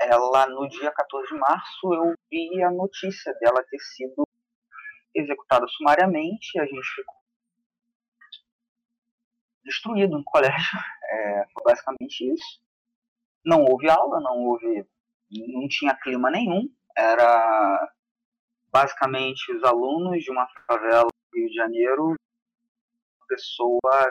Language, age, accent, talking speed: Portuguese, 20-39, Brazilian, 120 wpm